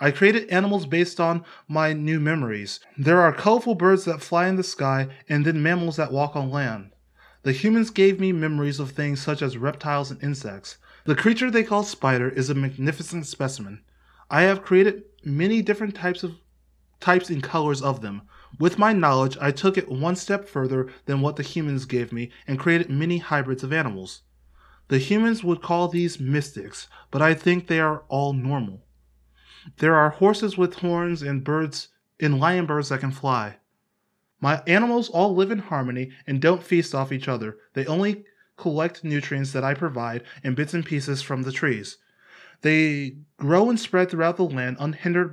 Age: 20-39